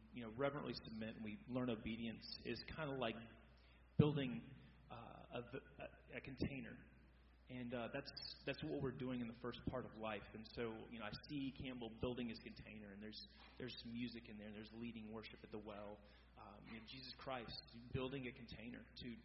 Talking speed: 190 wpm